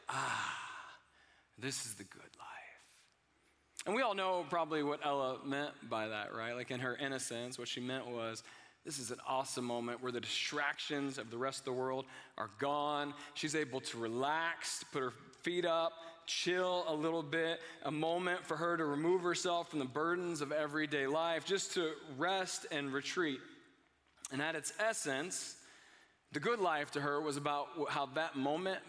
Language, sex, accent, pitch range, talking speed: English, male, American, 145-200 Hz, 175 wpm